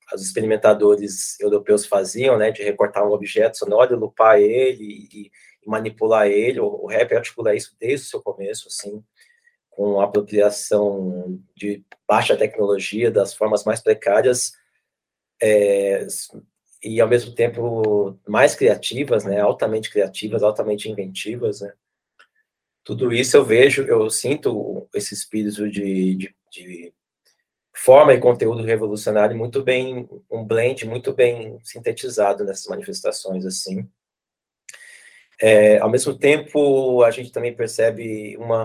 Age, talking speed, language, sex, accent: 20-39, 130 wpm, Portuguese, male, Brazilian